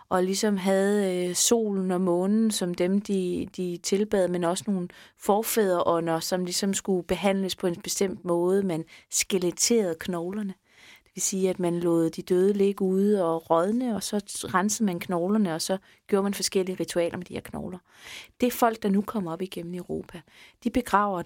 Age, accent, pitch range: 30-49, native, 180-210 Hz